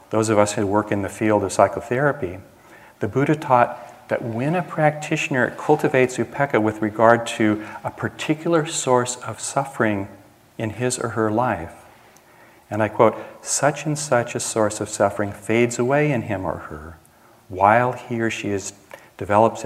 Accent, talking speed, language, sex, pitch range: American, 160 wpm, English, male, 105-125 Hz